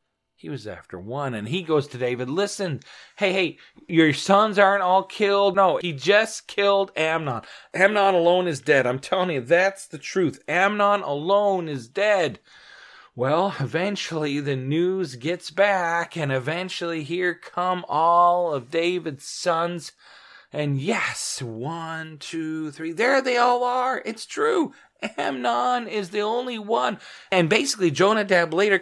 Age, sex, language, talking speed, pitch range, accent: 40-59, male, English, 145 wpm, 140-220 Hz, American